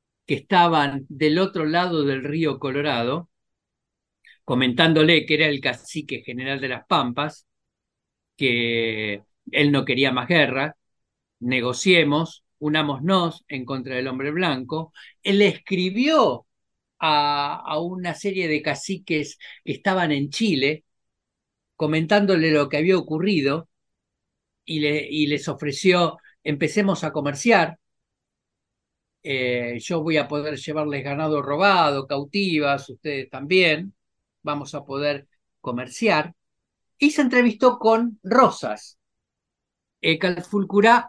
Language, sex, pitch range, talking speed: Spanish, male, 135-175 Hz, 110 wpm